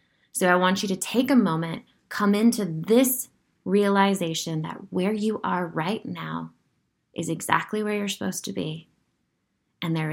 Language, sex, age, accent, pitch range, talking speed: English, female, 20-39, American, 165-200 Hz, 160 wpm